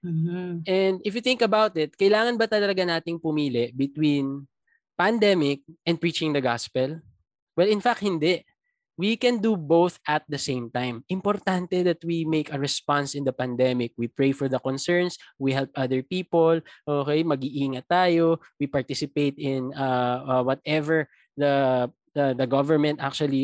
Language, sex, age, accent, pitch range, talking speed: English, male, 20-39, Filipino, 140-185 Hz, 155 wpm